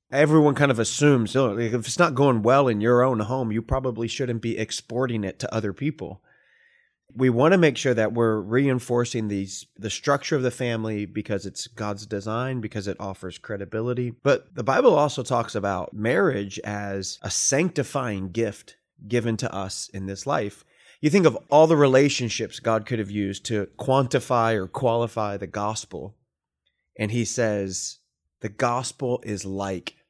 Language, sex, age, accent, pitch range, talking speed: English, male, 30-49, American, 105-130 Hz, 170 wpm